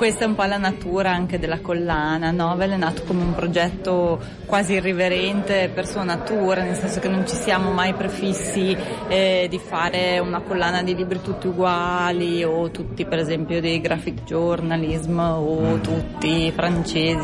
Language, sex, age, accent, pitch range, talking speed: Italian, female, 20-39, native, 165-185 Hz, 165 wpm